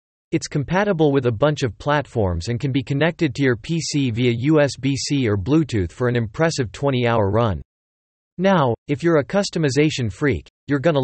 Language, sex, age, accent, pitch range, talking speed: English, male, 40-59, American, 110-155 Hz, 170 wpm